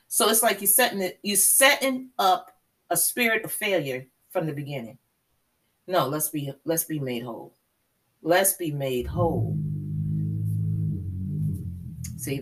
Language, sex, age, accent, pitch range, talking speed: English, female, 30-49, American, 115-180 Hz, 135 wpm